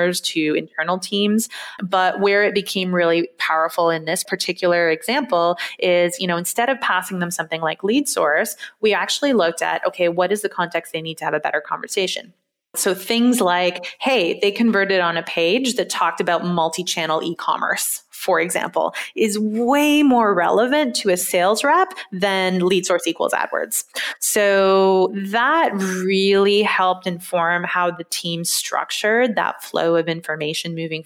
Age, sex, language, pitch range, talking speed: 20-39, female, English, 170-205 Hz, 160 wpm